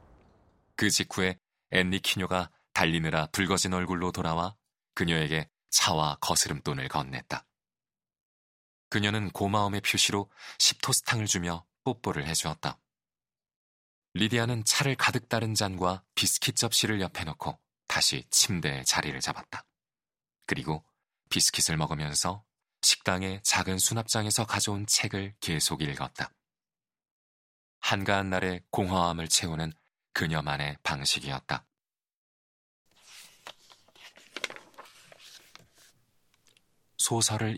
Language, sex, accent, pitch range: Korean, male, native, 80-100 Hz